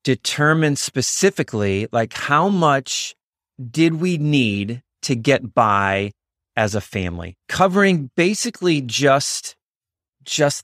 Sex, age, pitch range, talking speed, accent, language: male, 30-49, 100-130 Hz, 100 wpm, American, English